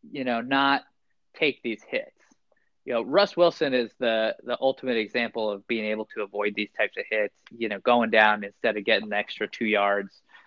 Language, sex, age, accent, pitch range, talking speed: English, male, 20-39, American, 110-160 Hz, 200 wpm